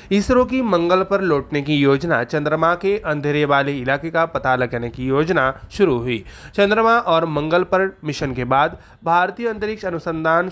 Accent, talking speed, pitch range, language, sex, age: native, 165 wpm, 145-185 Hz, Marathi, male, 30-49